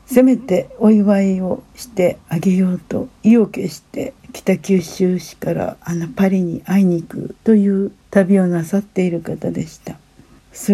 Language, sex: Japanese, female